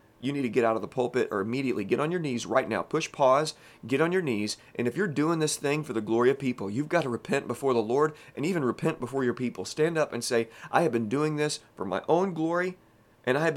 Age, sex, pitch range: 30-49, male, 110-145 Hz